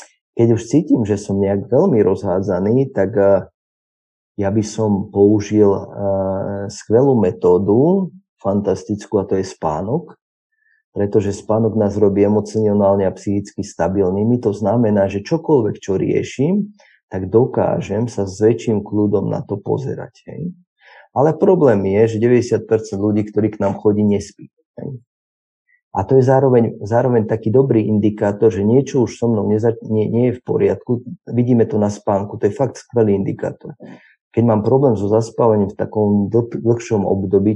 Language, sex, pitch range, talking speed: Slovak, male, 100-115 Hz, 145 wpm